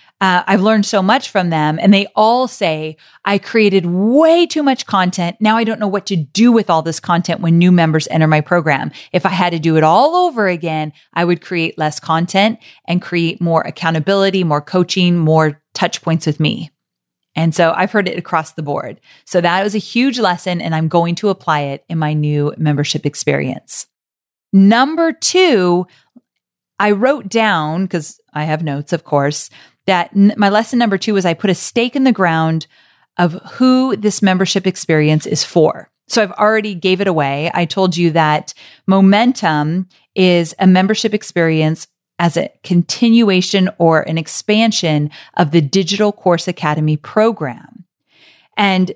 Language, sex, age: English, female, 30-49